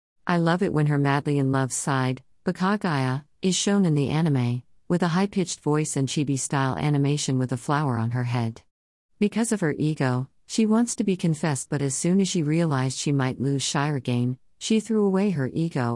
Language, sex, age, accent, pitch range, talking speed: English, female, 50-69, American, 130-165 Hz, 195 wpm